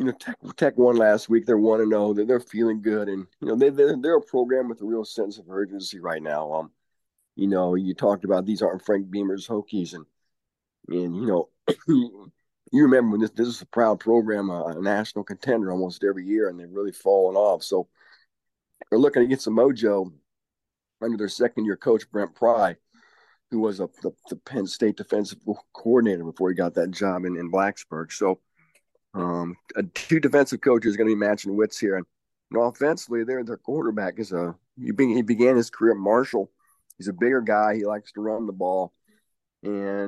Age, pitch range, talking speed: 50-69, 95-115 Hz, 200 wpm